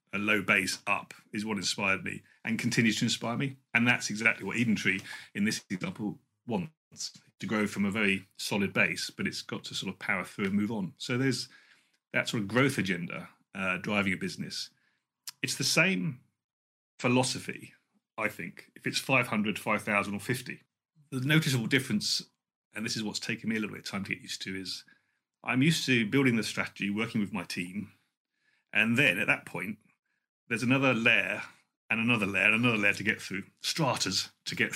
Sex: male